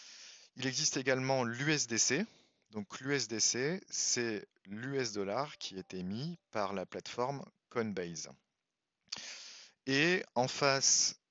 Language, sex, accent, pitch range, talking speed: French, male, French, 100-125 Hz, 100 wpm